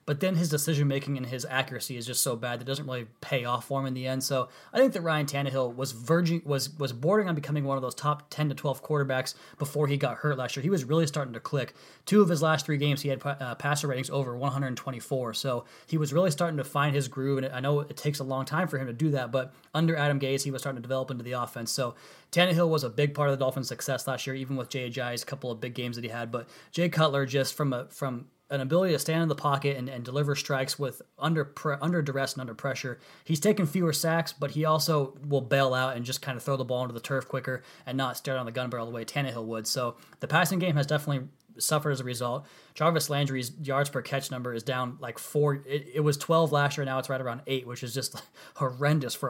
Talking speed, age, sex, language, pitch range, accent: 265 wpm, 20-39, male, English, 125-150 Hz, American